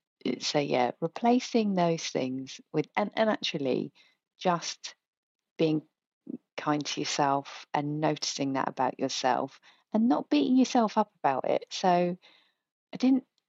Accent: British